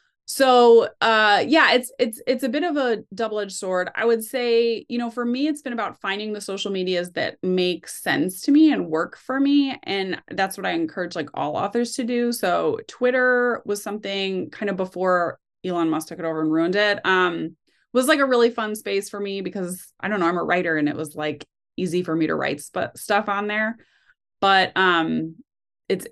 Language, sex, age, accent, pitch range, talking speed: English, female, 20-39, American, 180-245 Hz, 210 wpm